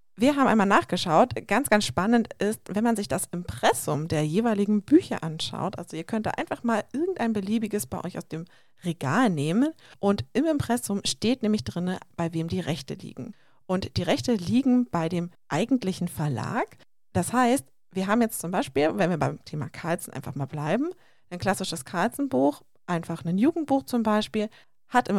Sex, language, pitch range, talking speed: female, German, 165-230 Hz, 180 wpm